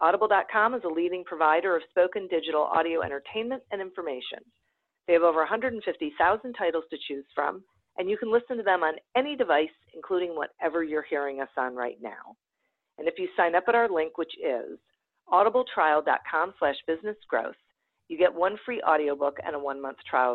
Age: 40-59